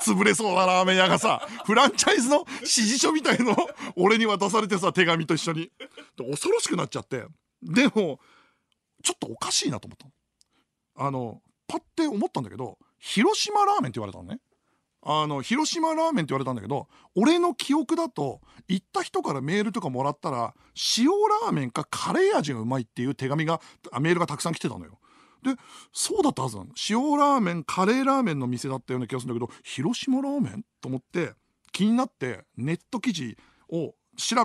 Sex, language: male, Japanese